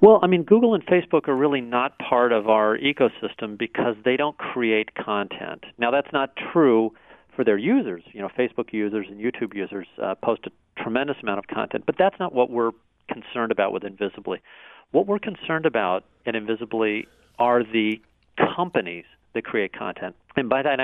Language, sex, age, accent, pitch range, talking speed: English, male, 50-69, American, 110-140 Hz, 180 wpm